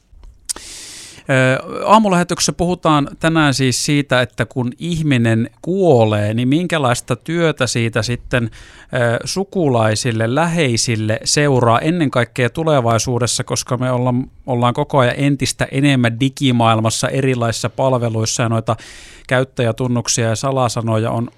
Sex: male